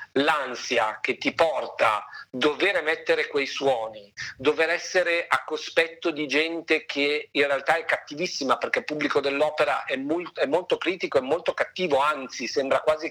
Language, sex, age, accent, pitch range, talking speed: Italian, male, 40-59, native, 135-210 Hz, 160 wpm